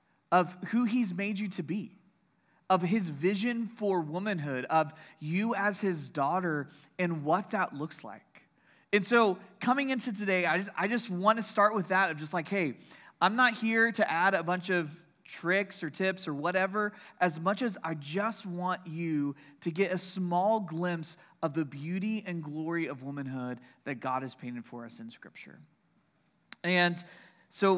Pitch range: 160-205 Hz